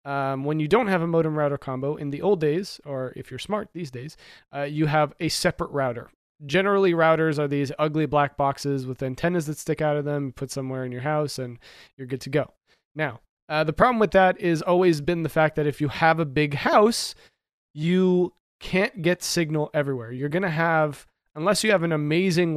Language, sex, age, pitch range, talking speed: English, male, 30-49, 135-170 Hz, 215 wpm